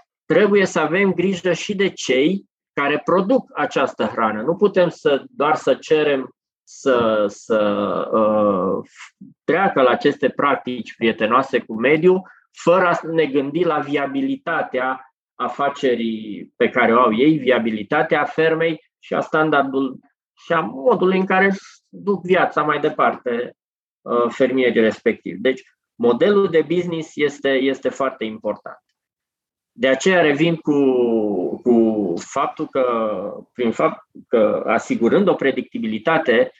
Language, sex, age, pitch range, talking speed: Romanian, male, 20-39, 130-175 Hz, 125 wpm